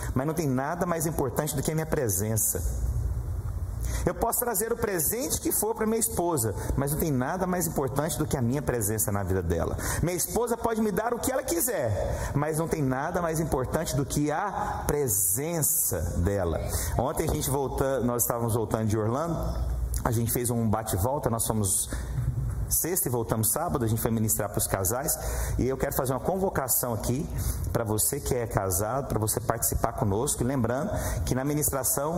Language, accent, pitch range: Portuguese, Brazilian, 110-165 Hz